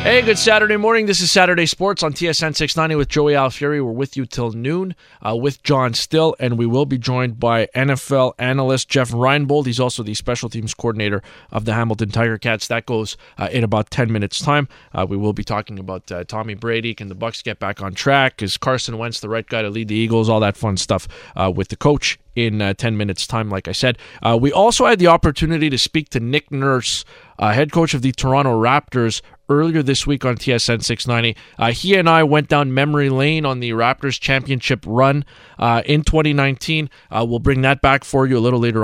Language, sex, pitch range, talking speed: English, male, 115-150 Hz, 220 wpm